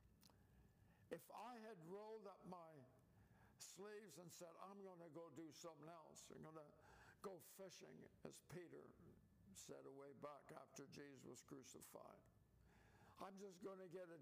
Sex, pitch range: male, 145-180 Hz